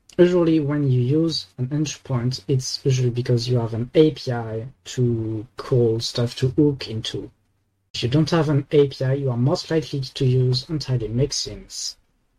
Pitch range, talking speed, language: 115-140 Hz, 160 wpm, English